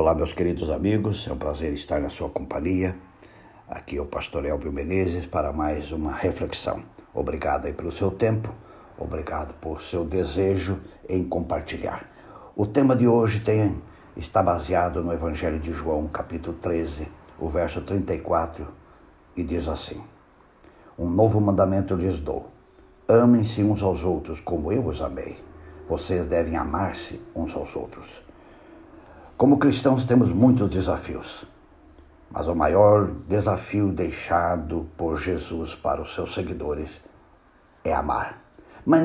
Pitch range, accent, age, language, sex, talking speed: 85-110 Hz, Brazilian, 60-79, Portuguese, male, 135 wpm